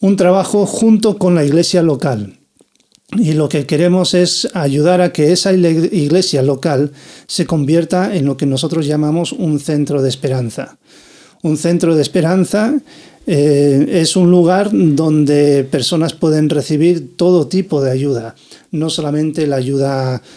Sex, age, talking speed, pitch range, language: male, 40-59, 145 wpm, 140-175 Hz, Spanish